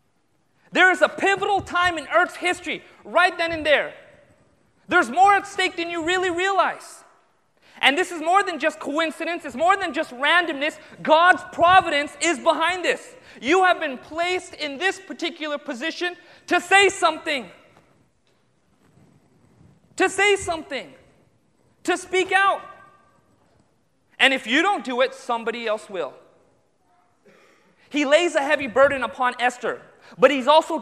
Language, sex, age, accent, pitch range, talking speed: English, male, 30-49, American, 260-345 Hz, 140 wpm